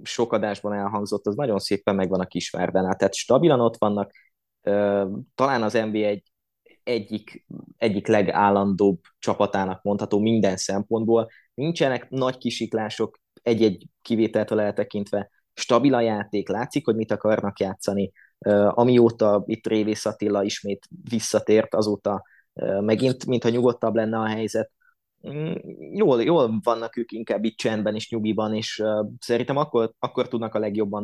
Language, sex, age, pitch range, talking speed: Hungarian, male, 20-39, 105-120 Hz, 130 wpm